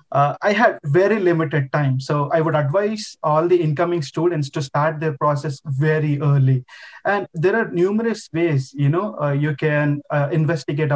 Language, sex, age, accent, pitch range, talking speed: Telugu, male, 20-39, native, 140-175 Hz, 175 wpm